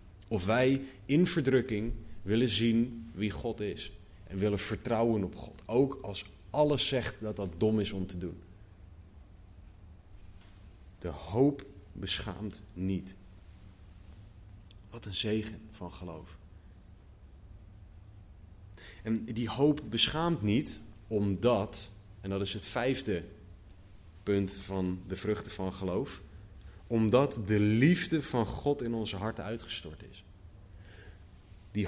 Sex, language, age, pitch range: male, Dutch, 30-49, 95-120 Hz